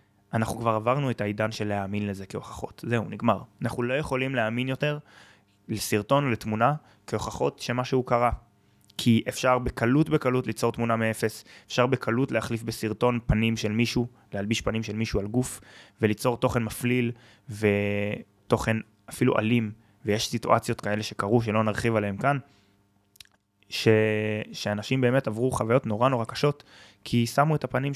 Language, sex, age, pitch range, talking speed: Hebrew, male, 20-39, 105-125 Hz, 145 wpm